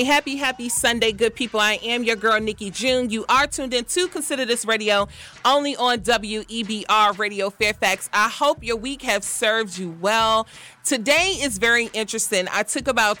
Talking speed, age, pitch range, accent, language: 175 wpm, 30-49, 200-255 Hz, American, English